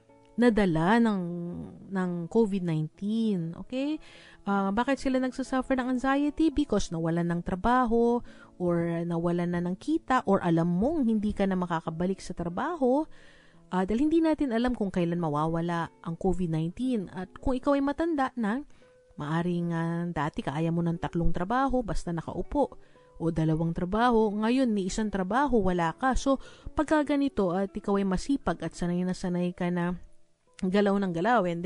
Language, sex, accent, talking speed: English, female, Filipino, 155 wpm